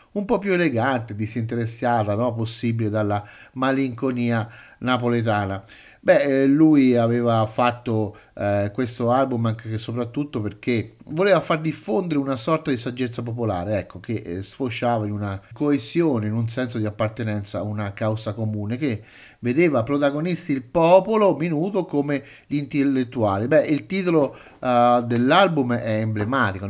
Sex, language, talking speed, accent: male, Italian, 135 wpm, native